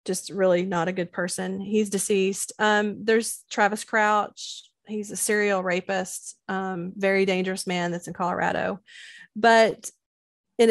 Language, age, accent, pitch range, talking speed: English, 30-49, American, 185-210 Hz, 140 wpm